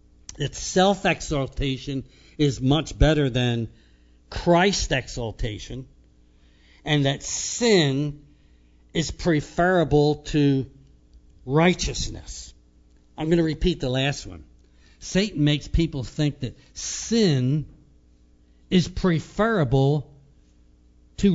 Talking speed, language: 85 wpm, English